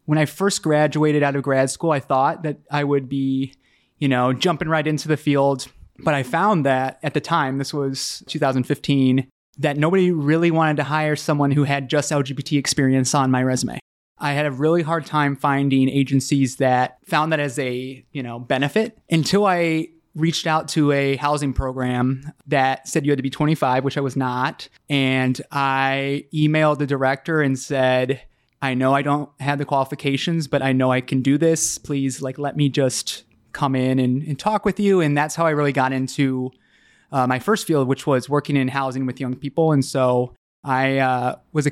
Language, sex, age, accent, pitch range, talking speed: English, male, 20-39, American, 130-150 Hz, 200 wpm